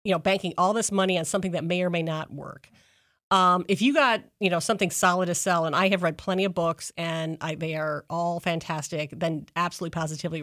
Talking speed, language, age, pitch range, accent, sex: 225 wpm, English, 40-59, 165-195 Hz, American, female